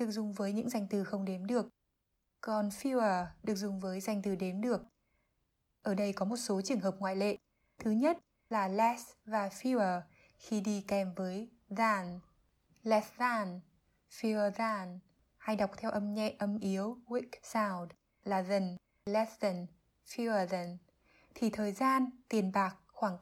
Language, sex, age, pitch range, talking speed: Vietnamese, female, 20-39, 200-230 Hz, 160 wpm